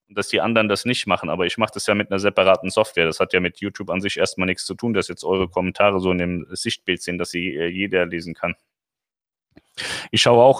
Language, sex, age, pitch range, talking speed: German, male, 30-49, 95-110 Hz, 250 wpm